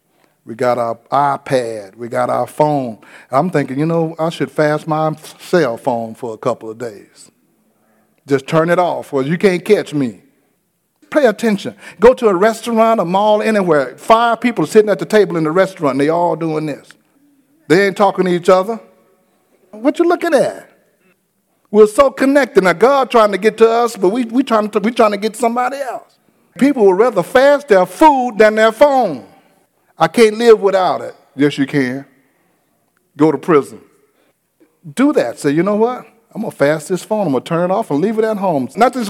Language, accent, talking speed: English, American, 200 wpm